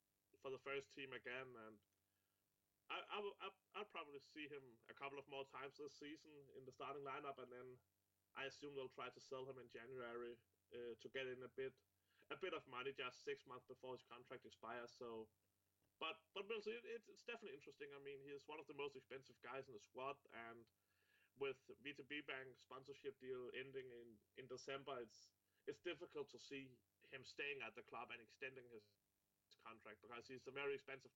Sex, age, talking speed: male, 30-49, 195 wpm